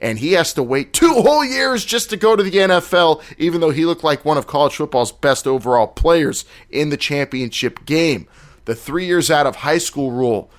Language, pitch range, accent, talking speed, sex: English, 120-165 Hz, American, 215 wpm, male